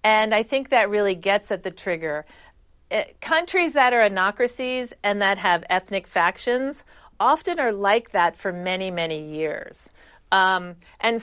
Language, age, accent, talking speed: English, 40-59, American, 150 wpm